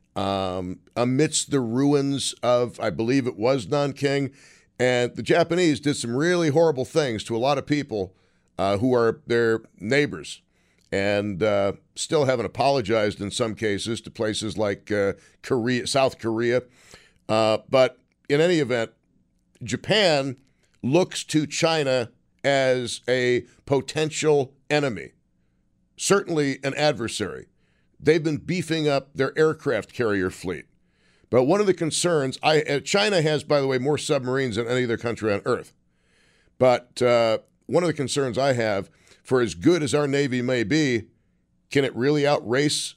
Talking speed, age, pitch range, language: 150 wpm, 50-69, 110-145 Hz, English